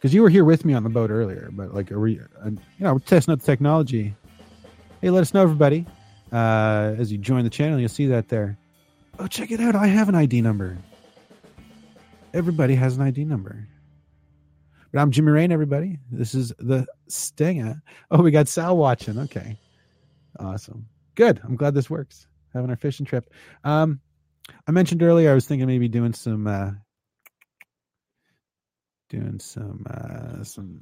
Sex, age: male, 30-49